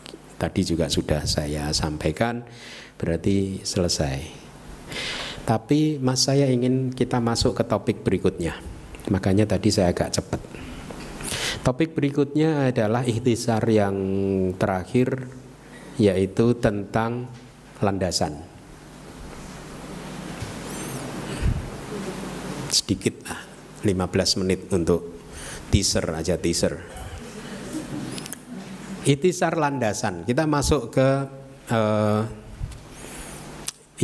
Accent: native